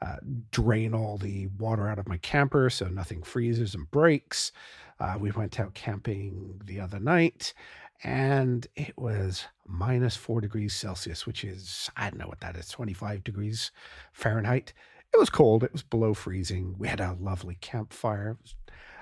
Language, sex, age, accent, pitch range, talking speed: English, male, 50-69, American, 100-140 Hz, 165 wpm